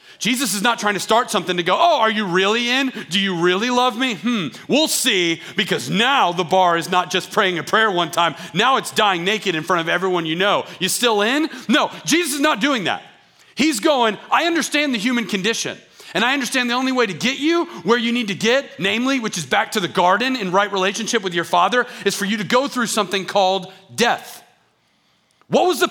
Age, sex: 40-59, male